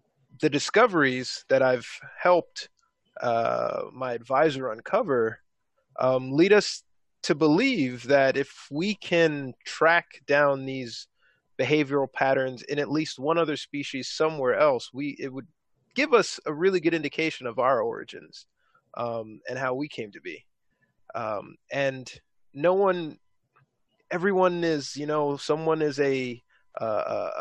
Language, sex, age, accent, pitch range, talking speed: English, male, 20-39, American, 125-155 Hz, 135 wpm